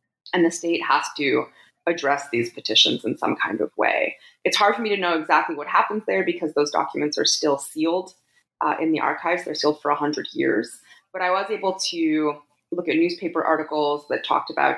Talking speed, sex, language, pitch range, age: 205 wpm, female, English, 145-180 Hz, 20-39